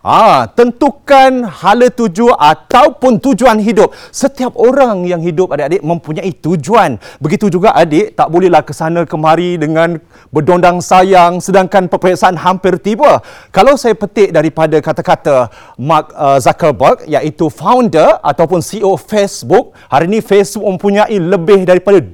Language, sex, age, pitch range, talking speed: Malay, male, 30-49, 170-255 Hz, 125 wpm